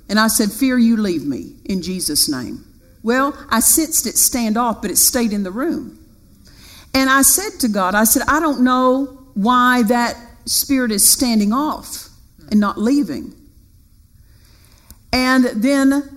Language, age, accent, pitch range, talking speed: English, 50-69, American, 225-285 Hz, 160 wpm